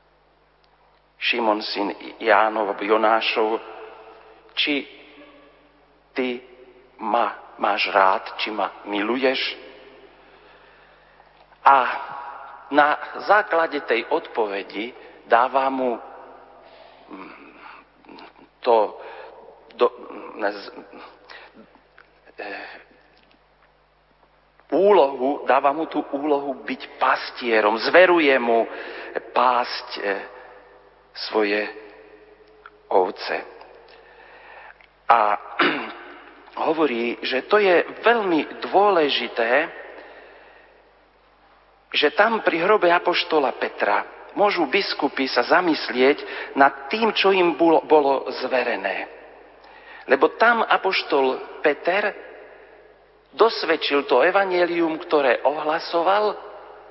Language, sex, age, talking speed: Slovak, male, 50-69, 75 wpm